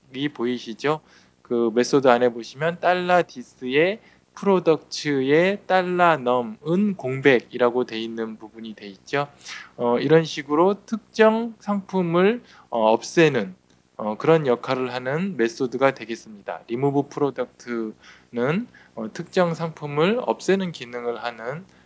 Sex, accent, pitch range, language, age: male, native, 120-190 Hz, Korean, 20-39